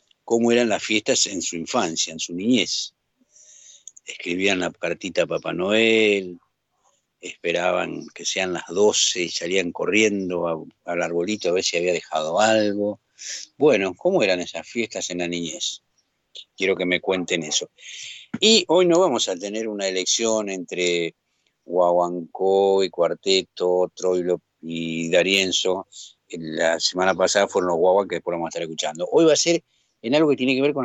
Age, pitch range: 50-69, 90-115 Hz